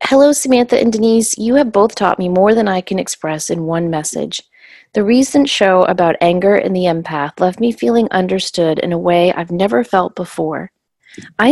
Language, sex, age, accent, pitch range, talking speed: English, female, 30-49, American, 180-245 Hz, 195 wpm